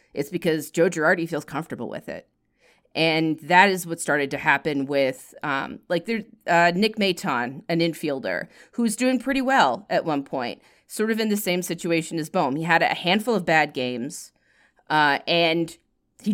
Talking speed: 185 wpm